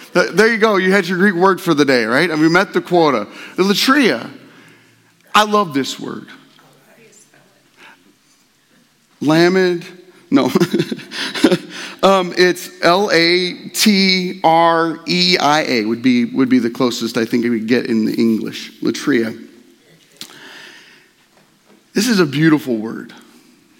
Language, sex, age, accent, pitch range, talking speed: English, male, 40-59, American, 140-190 Hz, 120 wpm